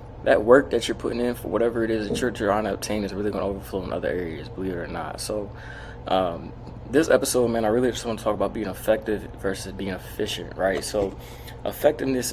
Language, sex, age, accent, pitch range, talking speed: English, male, 20-39, American, 100-120 Hz, 220 wpm